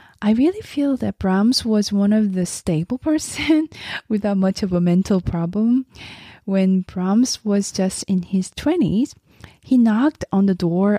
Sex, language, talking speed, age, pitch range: female, English, 160 wpm, 20-39, 170-210 Hz